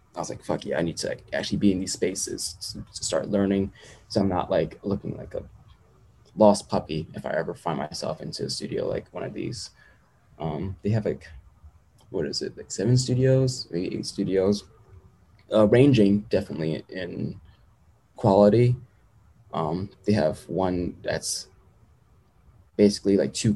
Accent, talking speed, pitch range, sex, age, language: American, 165 wpm, 95-115 Hz, male, 20-39, English